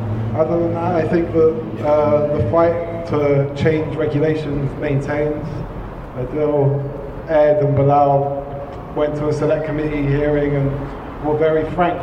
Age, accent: 20-39, British